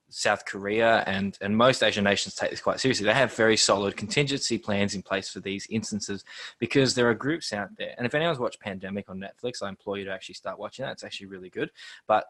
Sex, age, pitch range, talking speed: male, 20-39, 100-115 Hz, 235 wpm